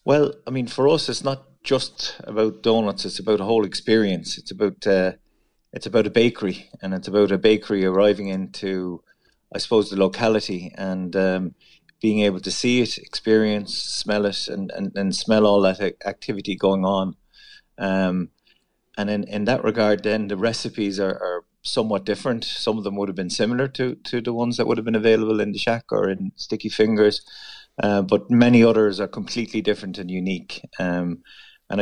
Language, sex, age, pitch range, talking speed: English, male, 30-49, 95-110 Hz, 185 wpm